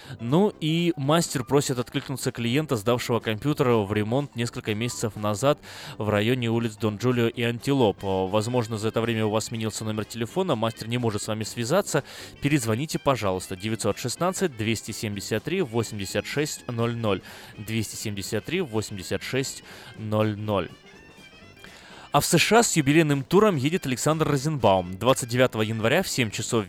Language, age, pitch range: Russian, 20-39, 105-145 Hz